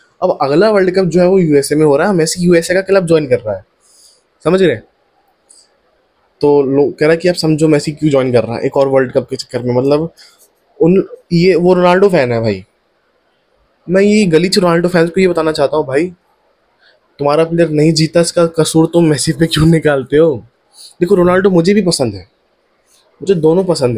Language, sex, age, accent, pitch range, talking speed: Hindi, male, 20-39, native, 140-175 Hz, 215 wpm